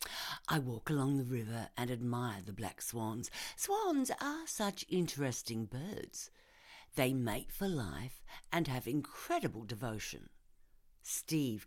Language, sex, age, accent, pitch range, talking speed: English, female, 60-79, British, 115-185 Hz, 125 wpm